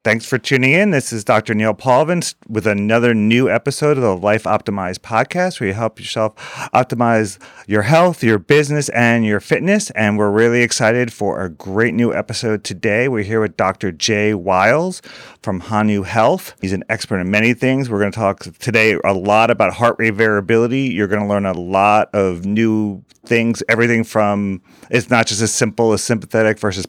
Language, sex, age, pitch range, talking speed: English, male, 30-49, 110-145 Hz, 190 wpm